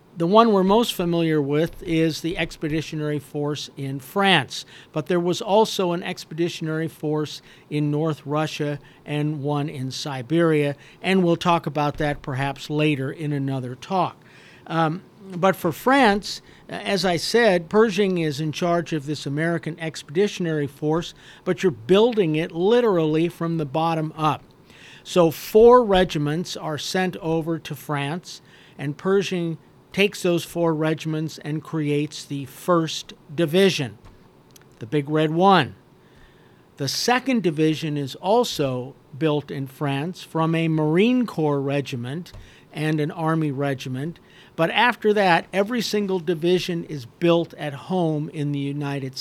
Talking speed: 140 wpm